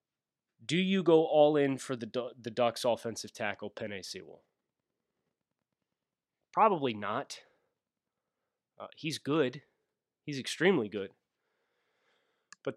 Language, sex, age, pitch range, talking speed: English, male, 30-49, 115-145 Hz, 105 wpm